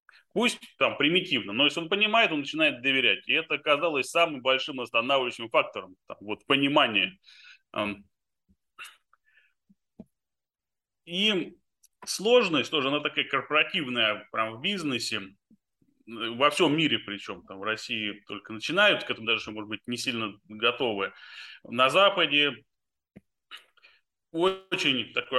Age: 20-39